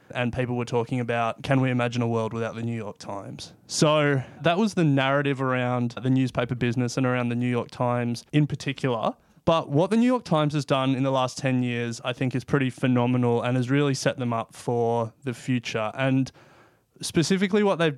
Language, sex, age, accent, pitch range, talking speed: English, male, 20-39, Australian, 125-150 Hz, 210 wpm